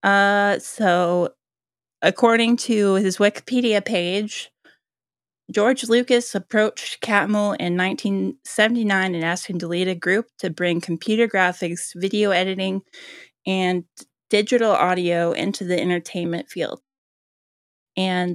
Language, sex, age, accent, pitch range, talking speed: English, female, 20-39, American, 180-205 Hz, 110 wpm